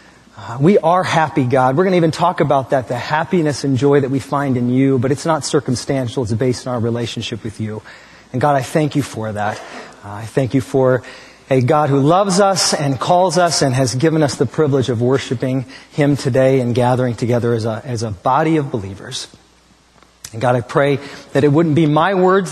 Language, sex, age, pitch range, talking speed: English, male, 40-59, 130-190 Hz, 215 wpm